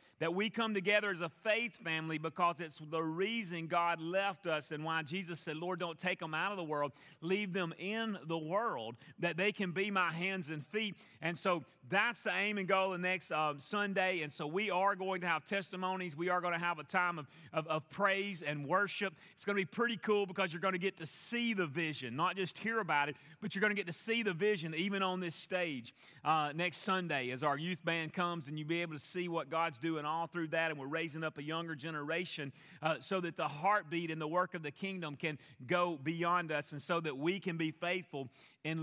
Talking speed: 240 wpm